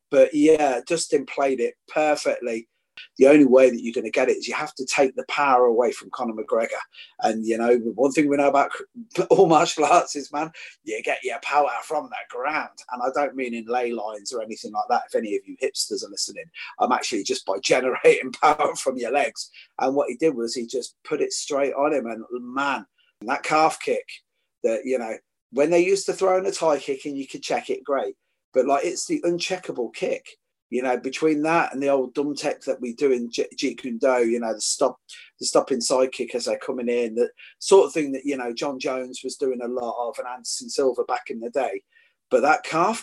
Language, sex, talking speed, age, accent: English, male, 230 wpm, 30-49, British